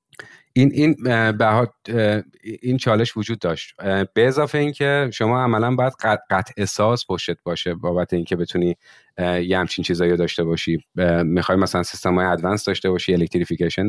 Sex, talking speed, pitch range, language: male, 145 wpm, 90-110 Hz, Persian